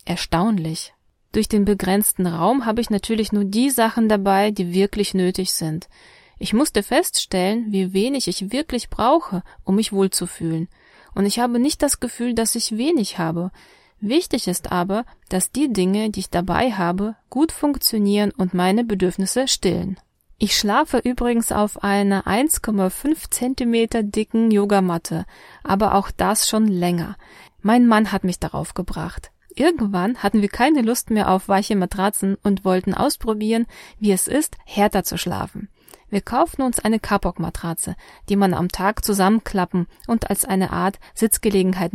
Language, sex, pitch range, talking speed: German, female, 185-230 Hz, 150 wpm